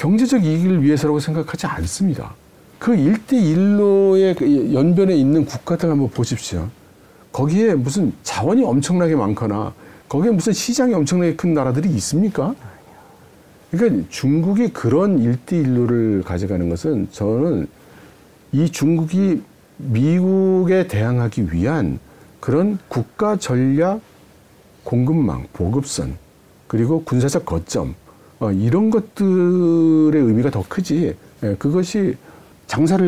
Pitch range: 120-185 Hz